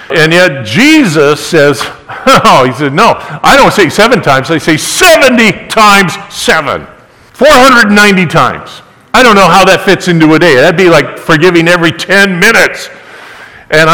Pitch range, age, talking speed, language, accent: 155-200 Hz, 50-69, 160 wpm, English, American